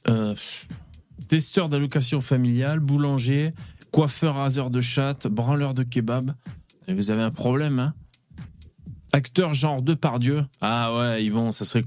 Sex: male